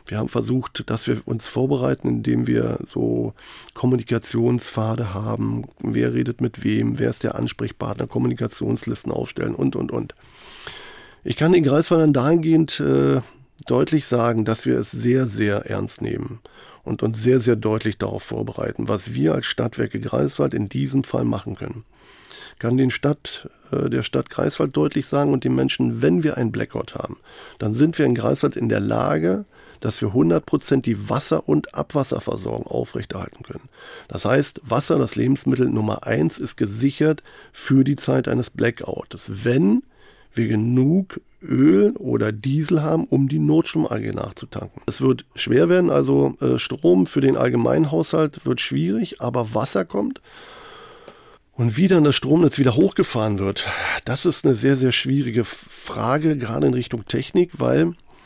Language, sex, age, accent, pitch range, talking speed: German, male, 40-59, German, 105-145 Hz, 155 wpm